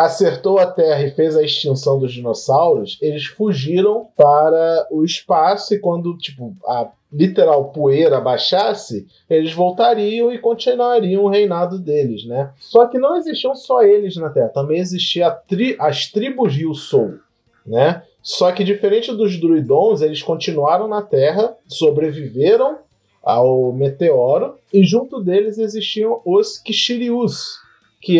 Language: Portuguese